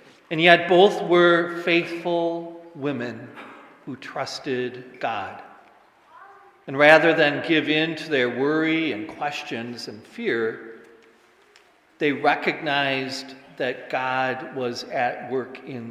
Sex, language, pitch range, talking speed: male, English, 125-155 Hz, 110 wpm